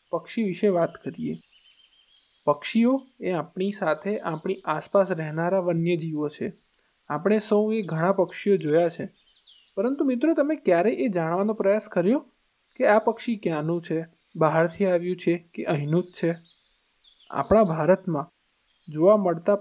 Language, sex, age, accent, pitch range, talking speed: Gujarati, male, 20-39, native, 165-210 Hz, 135 wpm